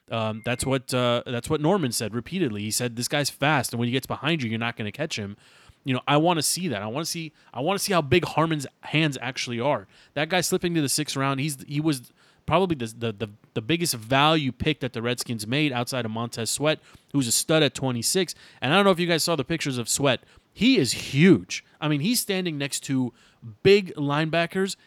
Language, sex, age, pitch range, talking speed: English, male, 30-49, 125-155 Hz, 245 wpm